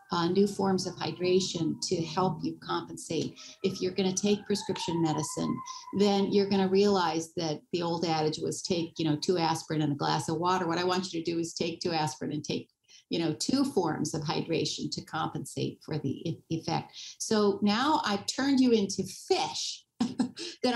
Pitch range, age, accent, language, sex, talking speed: 165-215 Hz, 50-69, American, English, female, 195 wpm